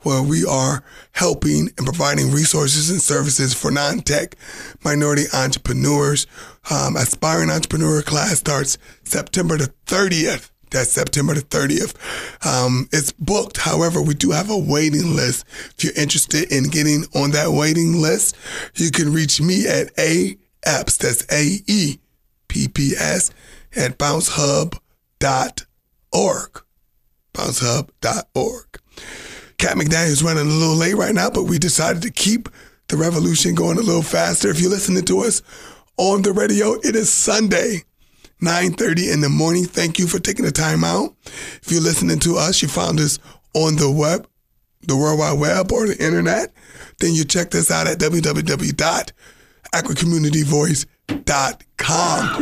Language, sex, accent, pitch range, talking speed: English, male, American, 145-180 Hz, 140 wpm